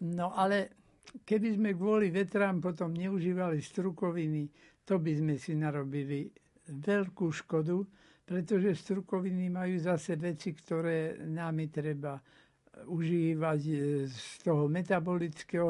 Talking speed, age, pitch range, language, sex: 105 wpm, 60-79, 160-190 Hz, Slovak, male